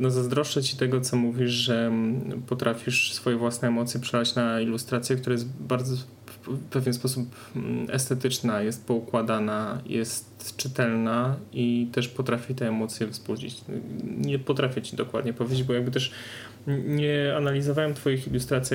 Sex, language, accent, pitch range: male, Polish, native, 115-130 Hz